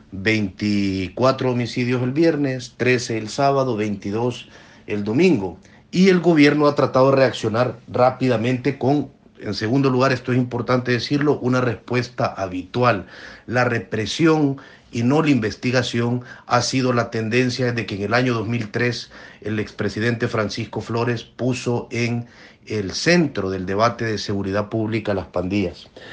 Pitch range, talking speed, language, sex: 110-130 Hz, 140 wpm, Spanish, male